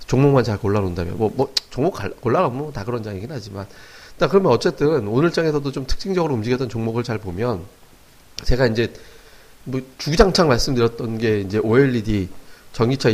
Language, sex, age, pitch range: Korean, male, 40-59, 105-140 Hz